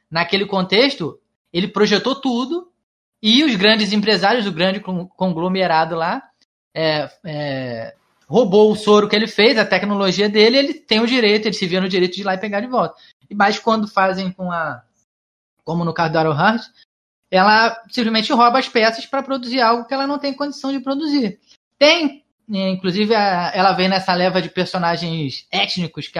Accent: Brazilian